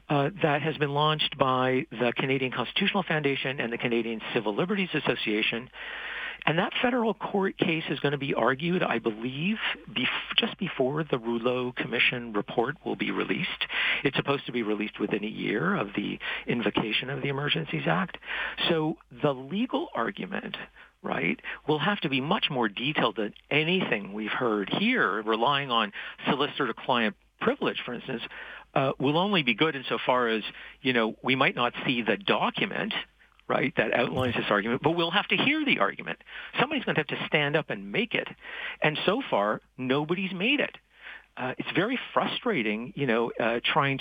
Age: 50-69